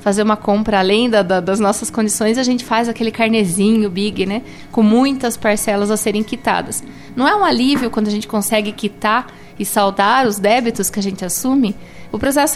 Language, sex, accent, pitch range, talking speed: Portuguese, female, Brazilian, 215-295 Hz, 185 wpm